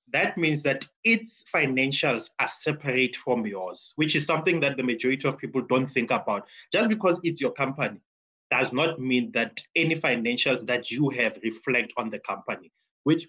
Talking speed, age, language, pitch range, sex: 175 wpm, 20-39, English, 125-155 Hz, male